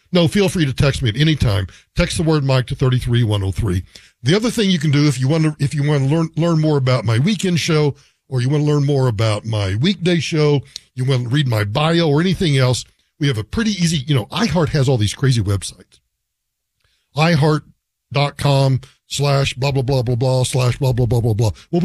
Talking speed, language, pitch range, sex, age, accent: 235 wpm, English, 120-180 Hz, male, 50-69, American